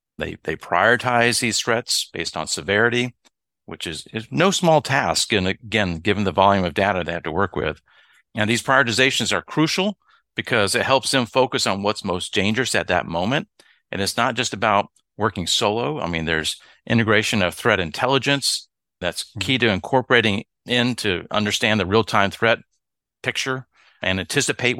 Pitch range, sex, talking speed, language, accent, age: 100-125 Hz, male, 170 wpm, English, American, 50-69